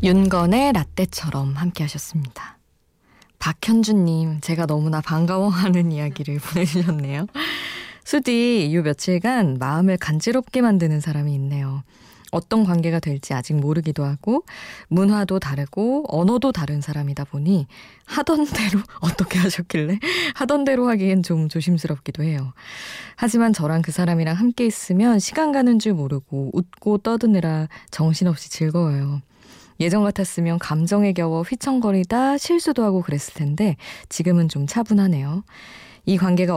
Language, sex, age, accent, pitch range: Korean, female, 20-39, native, 150-210 Hz